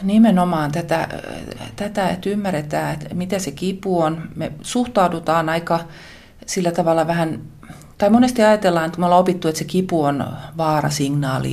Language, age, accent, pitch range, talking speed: Finnish, 30-49, native, 140-170 Hz, 145 wpm